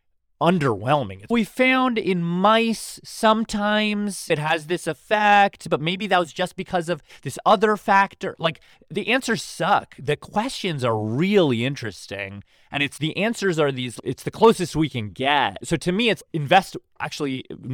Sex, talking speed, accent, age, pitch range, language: male, 160 wpm, American, 30-49, 115-180 Hz, English